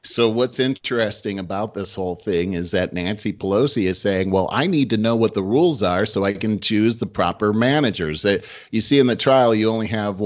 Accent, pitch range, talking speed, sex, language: American, 90-110 Hz, 215 wpm, male, English